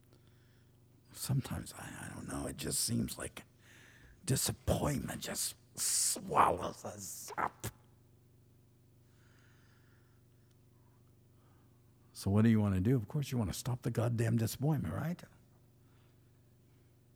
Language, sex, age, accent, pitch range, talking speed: English, male, 60-79, American, 115-120 Hz, 110 wpm